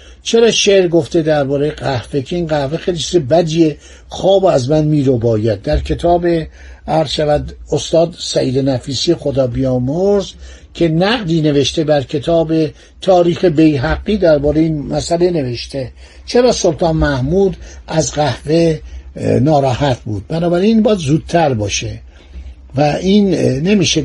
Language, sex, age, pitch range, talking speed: Persian, male, 60-79, 140-180 Hz, 120 wpm